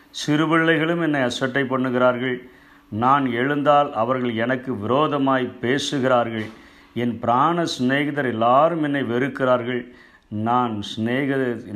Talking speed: 85 wpm